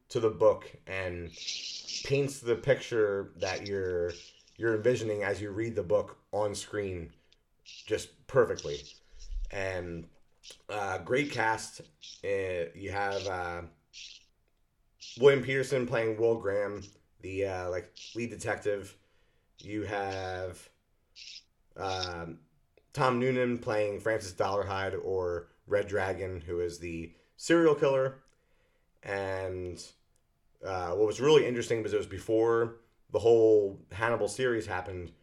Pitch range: 90-120 Hz